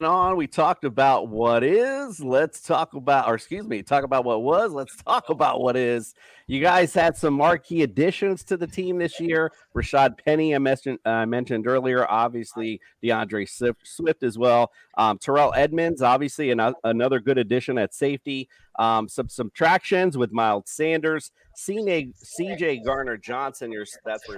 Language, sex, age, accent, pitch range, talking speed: English, male, 40-59, American, 115-145 Hz, 160 wpm